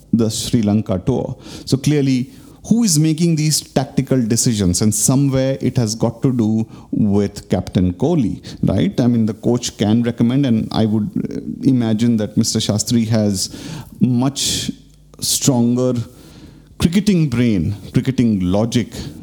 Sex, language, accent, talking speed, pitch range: male, English, Indian, 135 wpm, 105-130 Hz